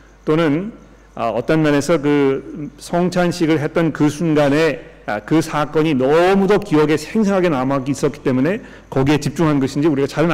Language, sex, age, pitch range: Korean, male, 40-59, 135-175 Hz